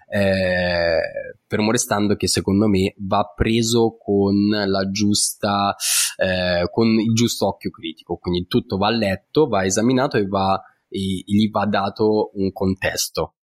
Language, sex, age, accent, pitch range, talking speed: Italian, male, 20-39, native, 95-120 Hz, 140 wpm